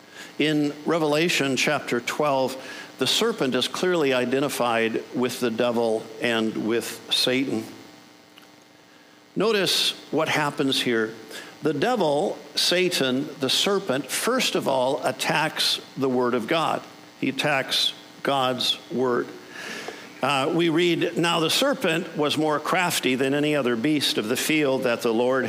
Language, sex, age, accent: English, male, 50-69, American